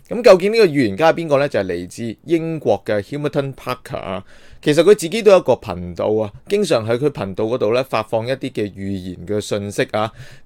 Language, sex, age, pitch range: Chinese, male, 30-49, 105-145 Hz